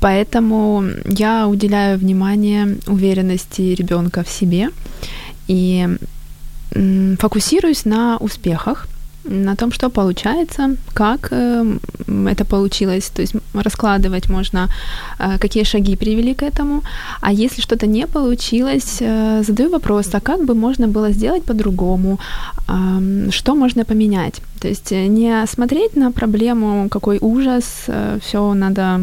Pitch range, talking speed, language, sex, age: 190-225 Hz, 115 wpm, Ukrainian, female, 20-39